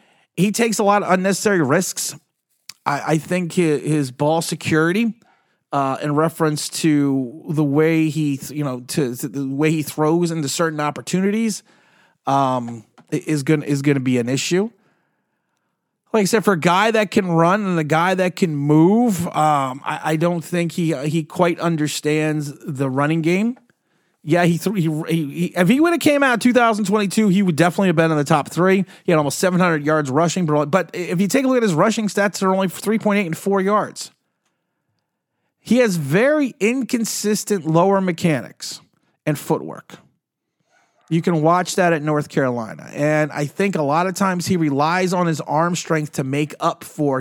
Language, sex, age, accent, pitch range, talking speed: English, male, 30-49, American, 150-190 Hz, 190 wpm